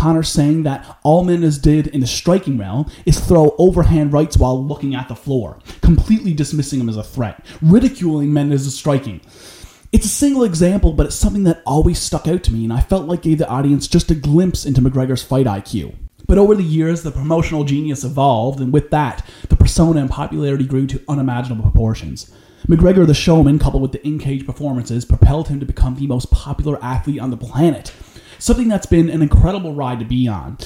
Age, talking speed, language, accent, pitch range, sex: 30-49, 200 wpm, English, American, 130-165 Hz, male